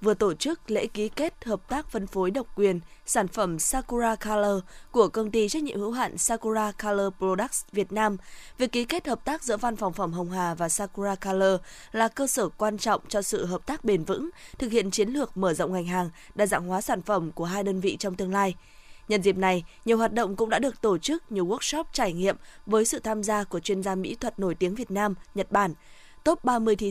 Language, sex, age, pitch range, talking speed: Vietnamese, female, 20-39, 190-230 Hz, 235 wpm